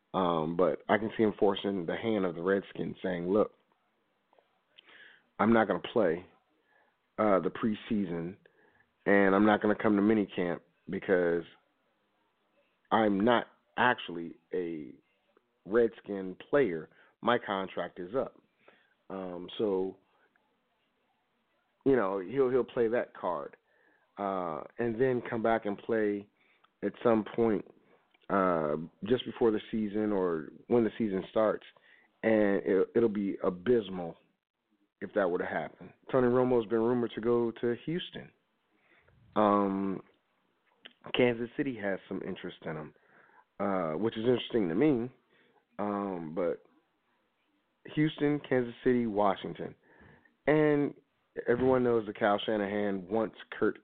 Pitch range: 95-120 Hz